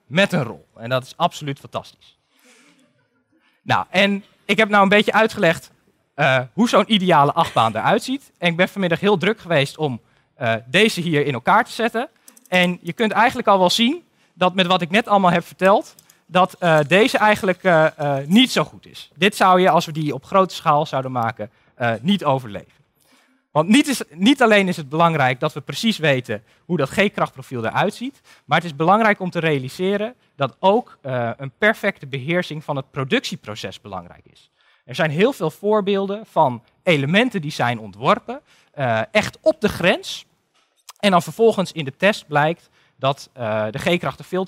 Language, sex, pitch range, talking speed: Dutch, male, 135-200 Hz, 185 wpm